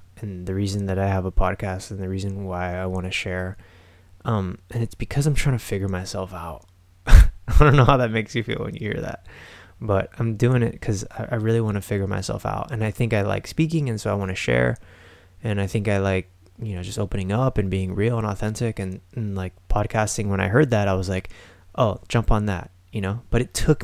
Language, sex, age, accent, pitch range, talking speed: English, male, 20-39, American, 90-110 Hz, 245 wpm